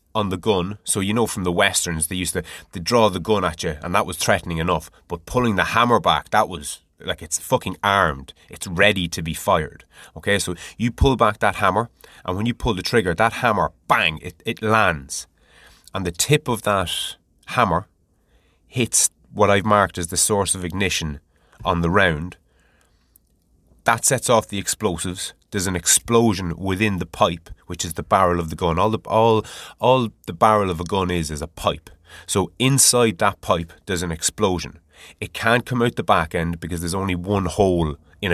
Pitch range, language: 85-105 Hz, English